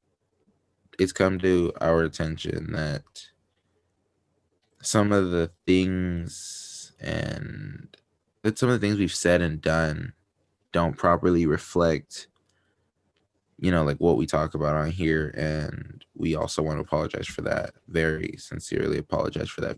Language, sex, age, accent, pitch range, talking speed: English, male, 20-39, American, 75-90 Hz, 135 wpm